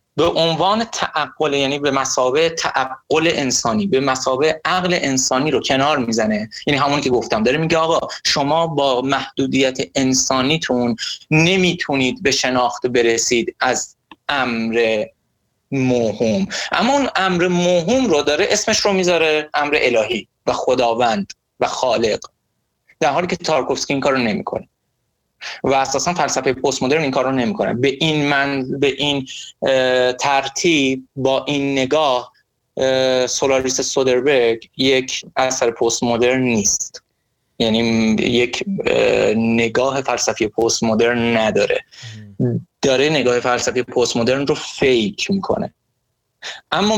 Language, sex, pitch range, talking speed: Persian, male, 125-155 Hz, 125 wpm